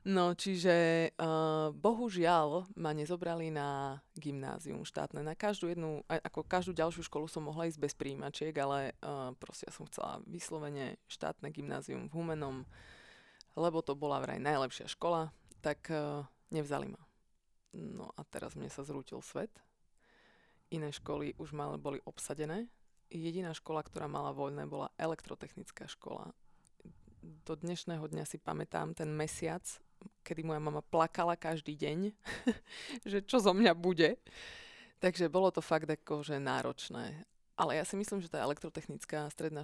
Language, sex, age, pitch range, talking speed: Slovak, female, 20-39, 150-175 Hz, 150 wpm